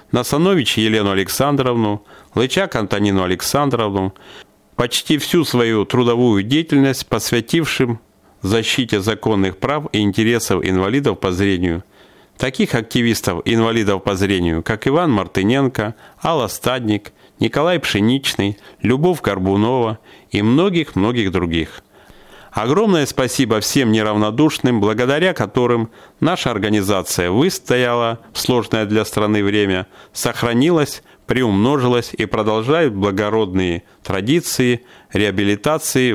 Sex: male